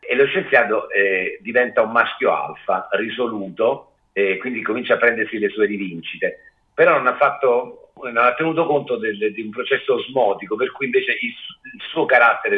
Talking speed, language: 175 wpm, Italian